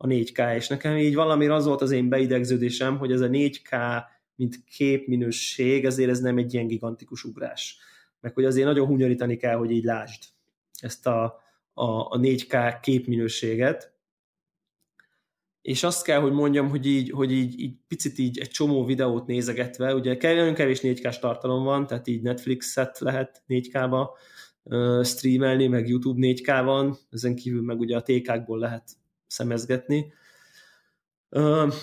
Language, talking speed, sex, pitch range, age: Hungarian, 155 wpm, male, 120-135 Hz, 20-39